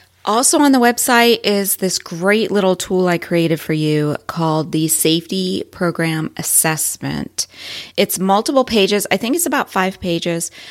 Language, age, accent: English, 30-49, American